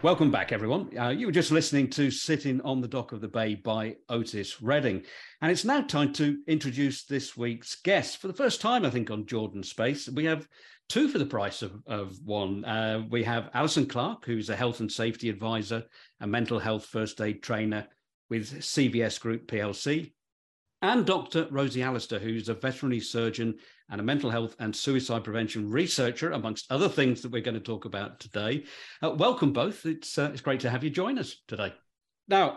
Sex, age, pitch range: male, 50-69, 105-135 Hz